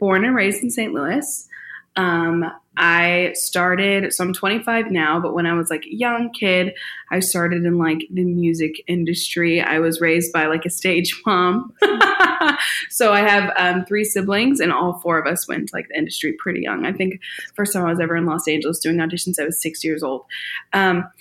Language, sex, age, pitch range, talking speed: English, female, 20-39, 175-205 Hz, 200 wpm